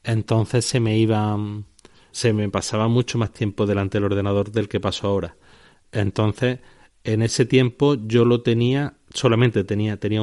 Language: Spanish